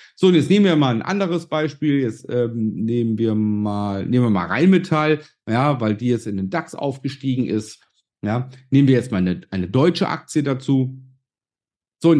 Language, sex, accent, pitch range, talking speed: German, male, German, 115-155 Hz, 170 wpm